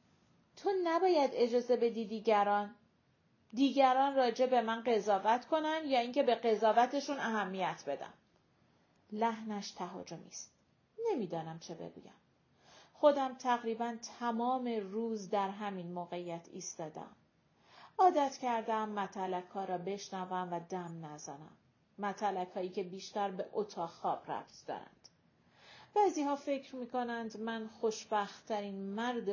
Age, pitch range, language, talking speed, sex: 40-59, 195-250 Hz, Persian, 115 wpm, female